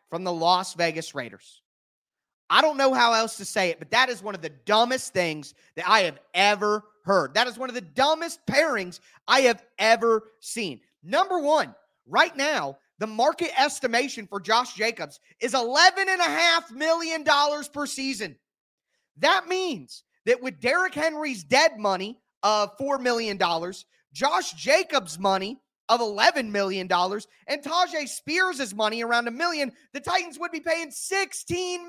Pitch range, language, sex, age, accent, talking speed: 210-325 Hz, English, male, 30-49, American, 155 wpm